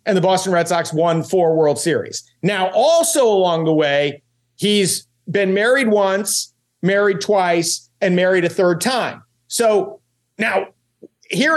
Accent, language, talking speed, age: American, English, 145 wpm, 40-59